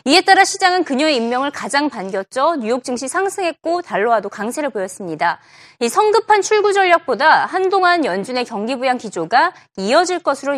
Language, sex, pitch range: Korean, female, 235-355 Hz